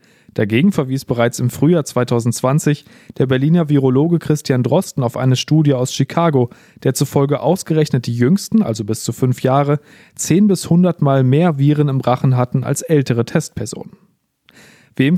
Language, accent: German, German